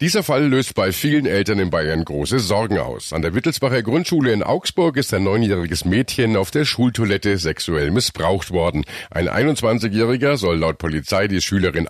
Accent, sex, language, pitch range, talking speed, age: German, male, German, 85-120 Hz, 170 wpm, 50-69